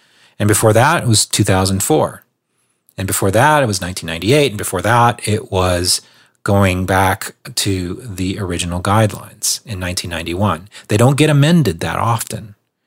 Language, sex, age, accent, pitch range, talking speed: English, male, 30-49, American, 95-120 Hz, 145 wpm